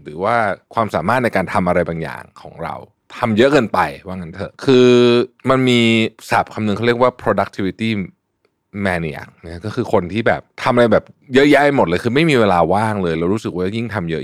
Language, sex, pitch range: Thai, male, 90-115 Hz